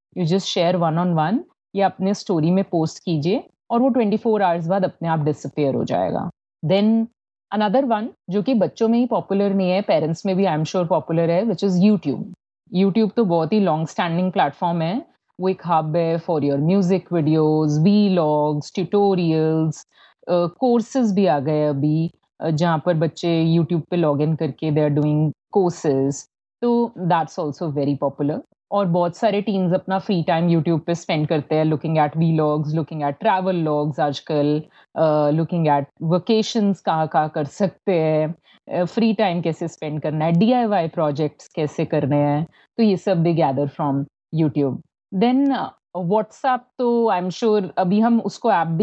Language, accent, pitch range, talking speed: English, Indian, 155-200 Hz, 130 wpm